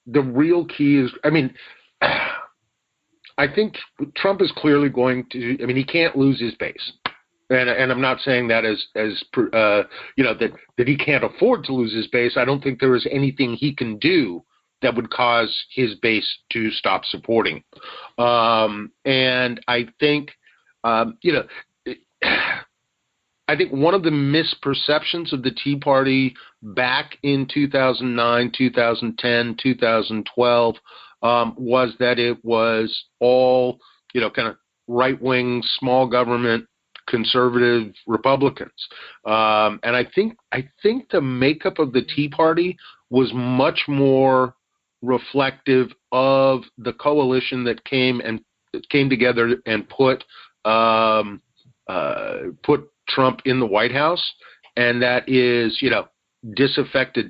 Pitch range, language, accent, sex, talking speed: 120-140 Hz, English, American, male, 140 wpm